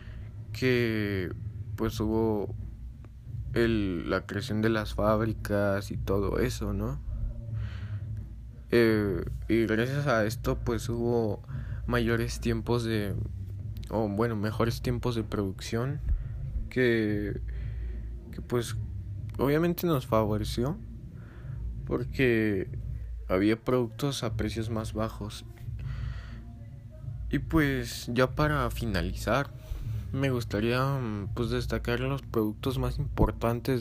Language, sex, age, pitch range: Spanish, male, 20-39, 105-120 Hz